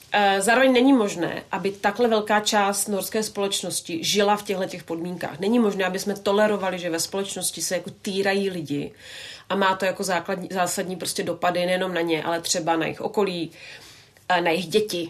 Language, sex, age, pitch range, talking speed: Czech, female, 30-49, 180-205 Hz, 170 wpm